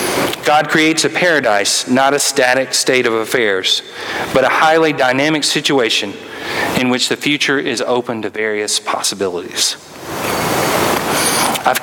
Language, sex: English, male